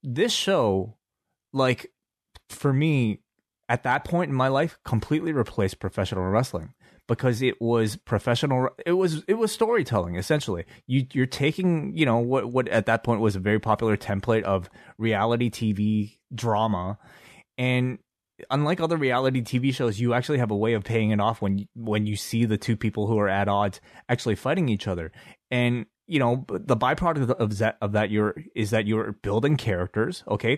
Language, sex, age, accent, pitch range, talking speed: English, male, 20-39, American, 105-125 Hz, 175 wpm